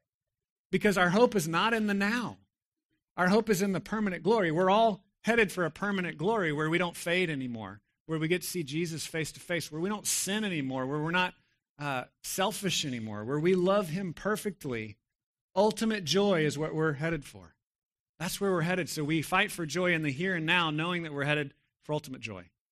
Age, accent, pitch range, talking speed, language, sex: 40-59, American, 135-185 Hz, 210 wpm, English, male